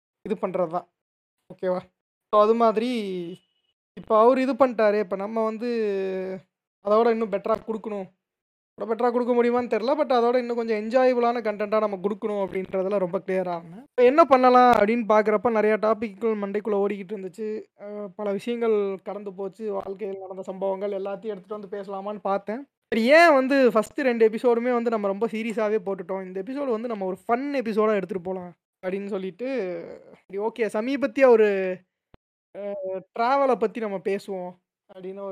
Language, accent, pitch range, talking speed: Tamil, native, 195-235 Hz, 145 wpm